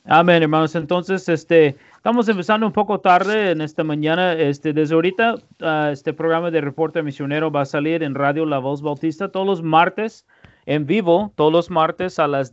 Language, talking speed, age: Spanish, 185 wpm, 40-59